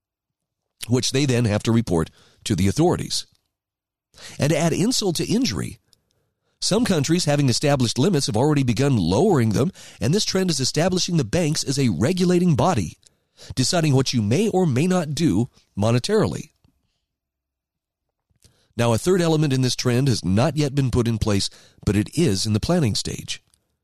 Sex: male